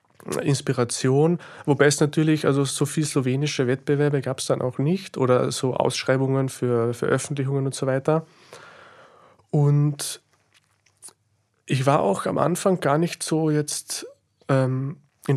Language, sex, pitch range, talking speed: German, male, 130-155 Hz, 135 wpm